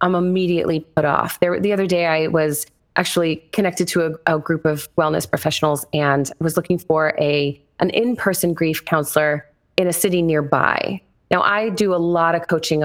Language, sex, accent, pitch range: English, female, American, 160-205 Hz